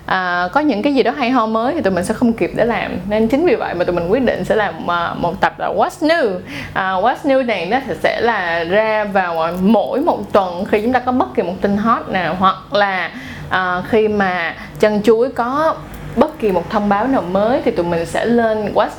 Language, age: Vietnamese, 20-39